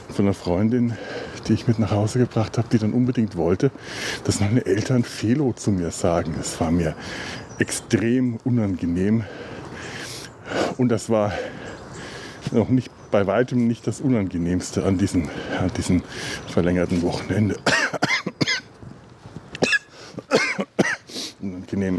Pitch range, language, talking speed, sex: 95-125 Hz, German, 115 wpm, male